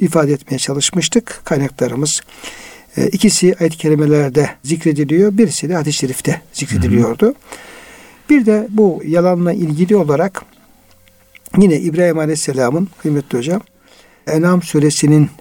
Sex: male